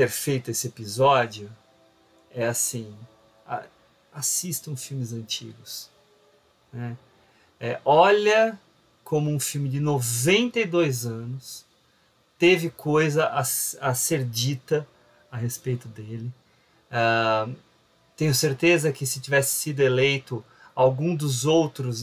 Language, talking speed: Portuguese, 105 wpm